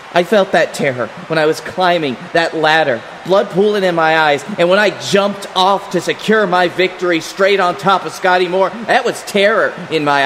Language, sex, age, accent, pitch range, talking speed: English, male, 40-59, American, 145-200 Hz, 205 wpm